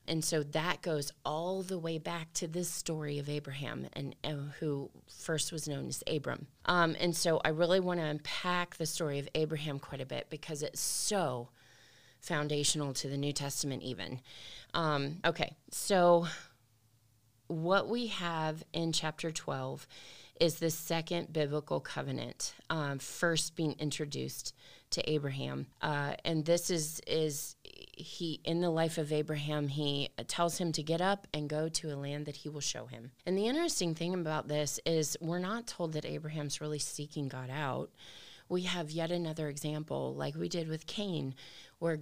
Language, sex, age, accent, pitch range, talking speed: English, female, 30-49, American, 145-170 Hz, 170 wpm